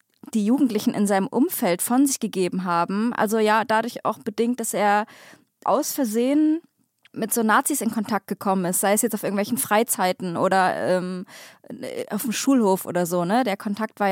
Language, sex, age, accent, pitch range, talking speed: German, female, 20-39, German, 205-250 Hz, 180 wpm